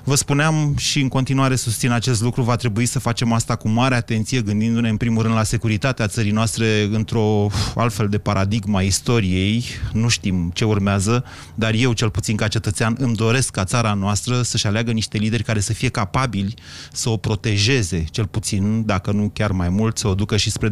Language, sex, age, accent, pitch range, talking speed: Romanian, male, 30-49, native, 105-130 Hz, 195 wpm